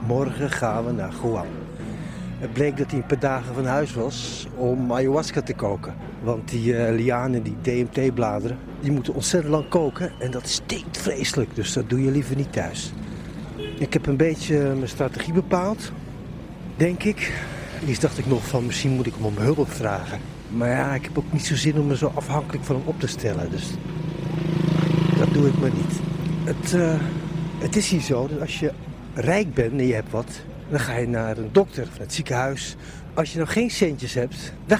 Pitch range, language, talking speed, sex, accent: 125-165 Hz, Dutch, 205 wpm, male, Dutch